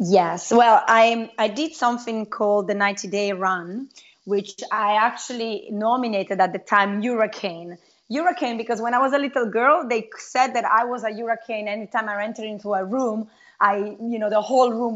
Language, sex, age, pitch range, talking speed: English, female, 30-49, 210-255 Hz, 185 wpm